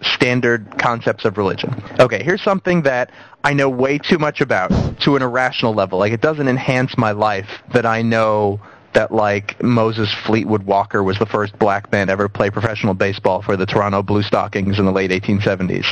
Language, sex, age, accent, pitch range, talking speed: English, male, 20-39, American, 105-135 Hz, 195 wpm